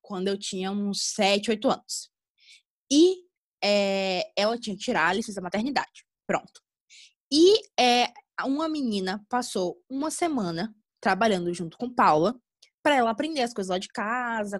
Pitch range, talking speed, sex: 195-255 Hz, 150 wpm, female